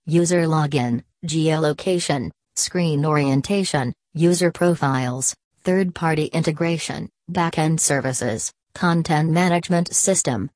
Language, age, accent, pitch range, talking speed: English, 40-59, American, 150-180 Hz, 80 wpm